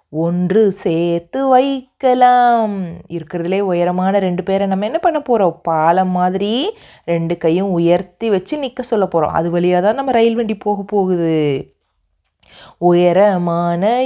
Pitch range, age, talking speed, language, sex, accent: 195-270 Hz, 20-39, 55 wpm, Tamil, female, native